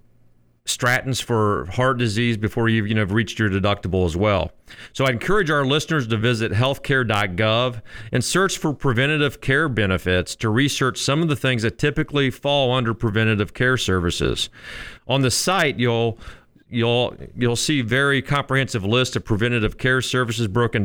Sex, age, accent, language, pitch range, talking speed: male, 40-59, American, English, 105-125 Hz, 165 wpm